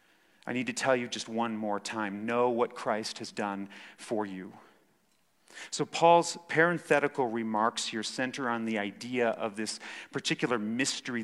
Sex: male